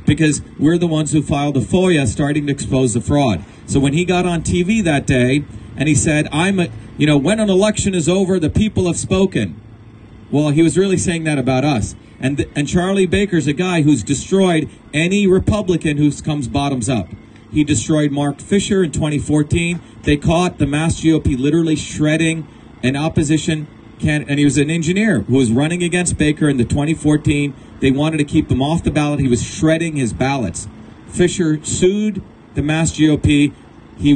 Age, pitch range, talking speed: 40-59, 135-165 Hz, 190 wpm